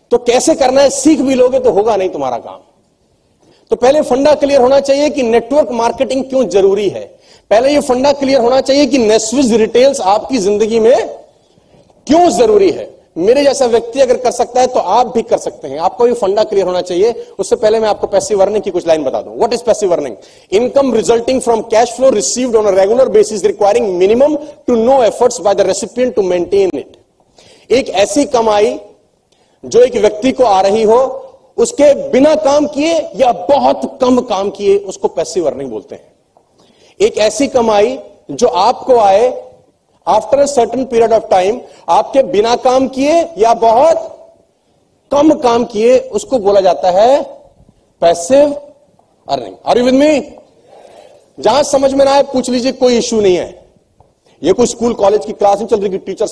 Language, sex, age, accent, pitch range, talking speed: Hindi, male, 40-59, native, 215-290 Hz, 175 wpm